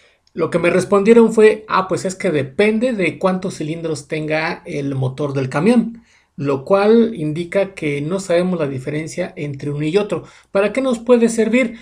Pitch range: 155-205 Hz